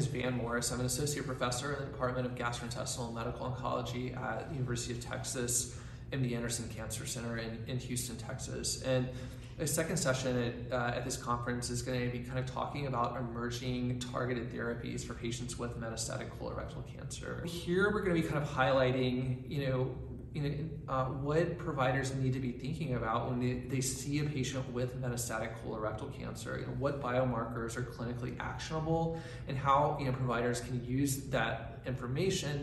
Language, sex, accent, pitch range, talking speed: English, male, American, 120-135 Hz, 185 wpm